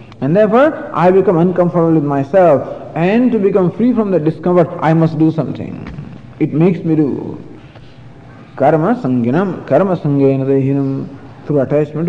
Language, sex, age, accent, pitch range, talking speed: English, male, 50-69, Indian, 130-190 Hz, 140 wpm